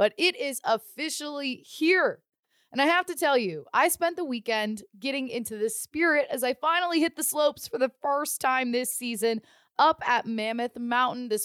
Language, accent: English, American